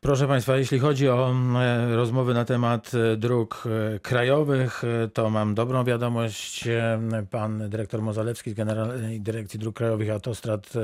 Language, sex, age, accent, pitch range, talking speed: Polish, male, 40-59, native, 110-130 Hz, 125 wpm